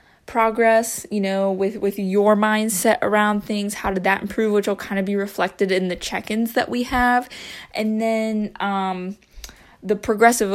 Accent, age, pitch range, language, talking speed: American, 20-39, 195-220 Hz, English, 170 wpm